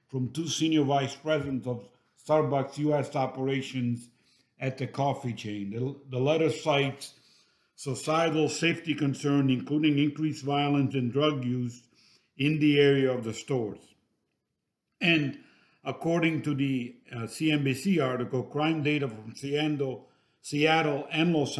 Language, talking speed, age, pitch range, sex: English, 130 wpm, 50-69, 130-150 Hz, male